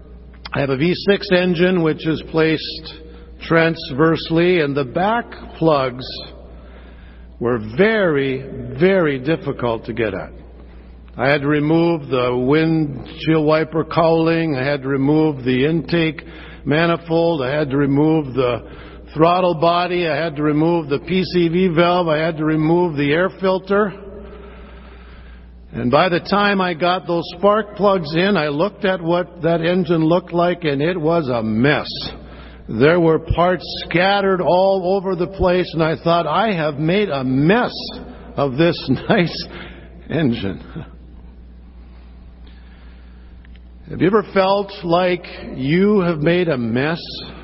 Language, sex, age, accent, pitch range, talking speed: English, male, 60-79, American, 120-180 Hz, 140 wpm